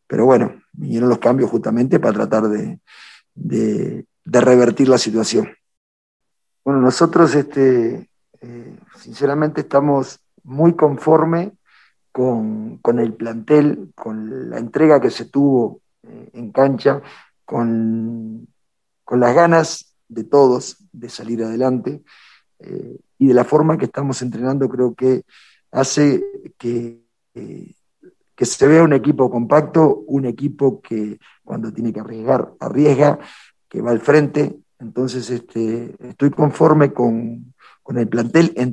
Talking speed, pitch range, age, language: 130 wpm, 115-145 Hz, 40-59, Spanish